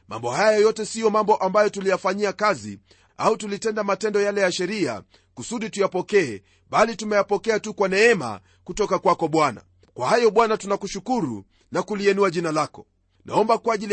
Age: 40-59